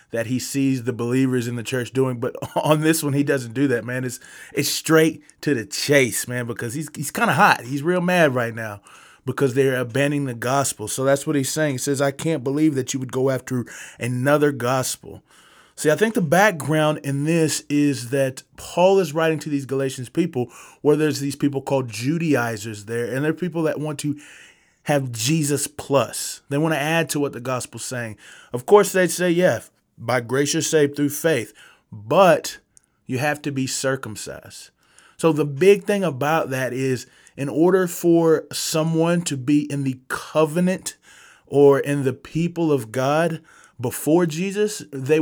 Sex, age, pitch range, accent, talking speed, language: male, 20-39, 130-160 Hz, American, 185 wpm, English